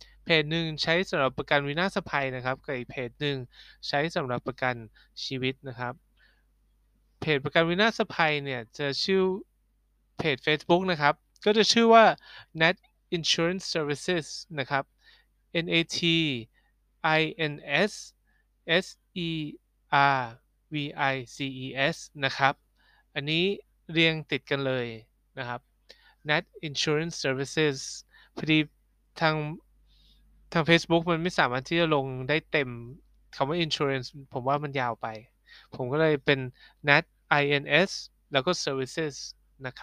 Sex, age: male, 20-39